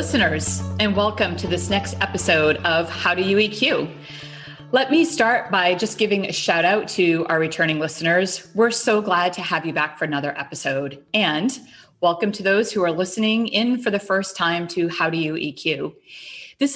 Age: 30-49